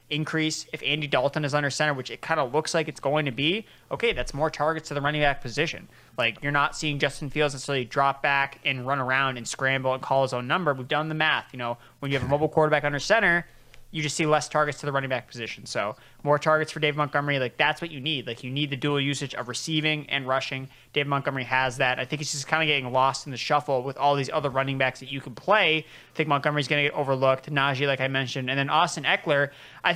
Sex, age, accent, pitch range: male, 20-39, American, 135-150 Hz